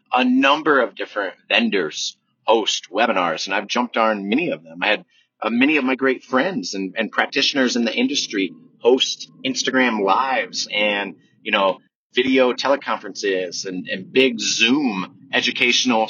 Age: 30-49